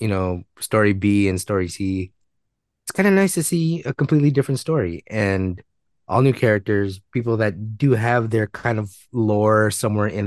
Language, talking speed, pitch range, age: English, 180 wpm, 95-120 Hz, 20-39